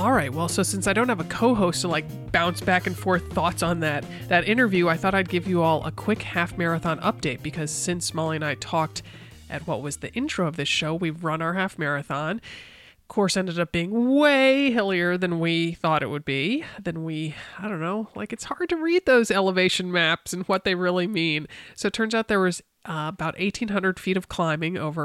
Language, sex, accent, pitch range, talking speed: English, male, American, 160-195 Hz, 225 wpm